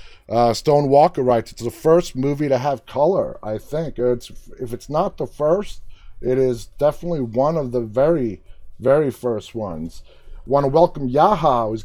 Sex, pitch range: male, 115-155 Hz